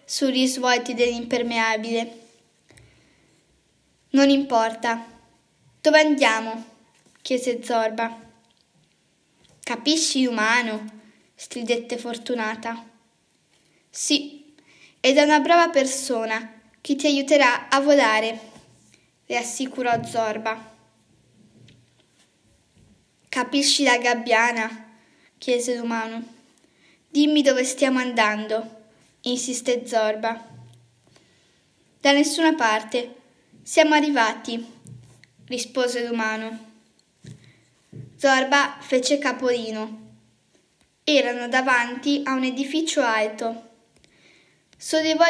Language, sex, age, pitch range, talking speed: Italian, female, 10-29, 225-280 Hz, 75 wpm